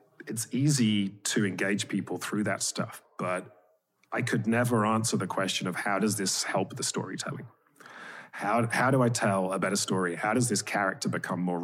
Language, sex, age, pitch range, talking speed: English, male, 30-49, 90-120 Hz, 190 wpm